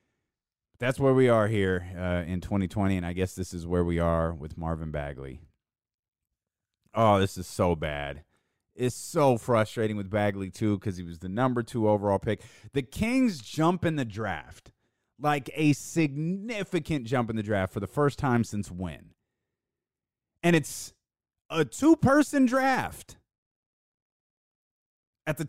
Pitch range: 90-140 Hz